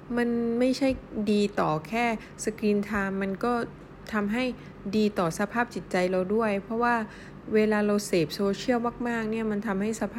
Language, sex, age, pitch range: Thai, female, 20-39, 185-230 Hz